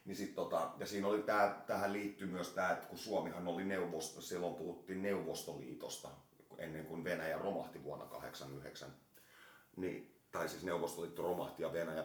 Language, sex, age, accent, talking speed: Finnish, male, 30-49, native, 160 wpm